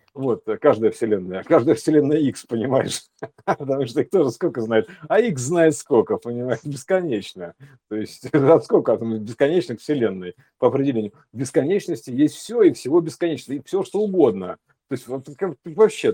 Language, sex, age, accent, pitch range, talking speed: Russian, male, 50-69, native, 125-170 Hz, 155 wpm